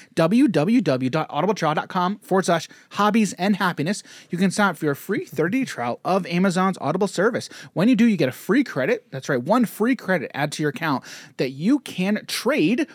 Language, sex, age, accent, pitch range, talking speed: English, male, 30-49, American, 145-205 Hz, 185 wpm